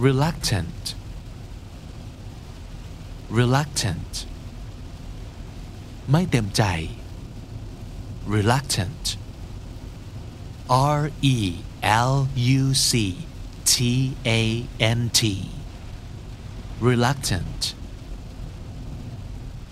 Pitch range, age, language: 90-125 Hz, 50-69, Thai